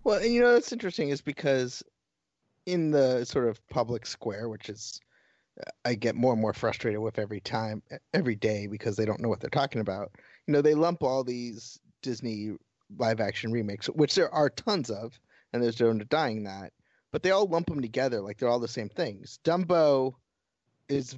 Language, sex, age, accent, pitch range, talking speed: English, male, 30-49, American, 115-140 Hz, 195 wpm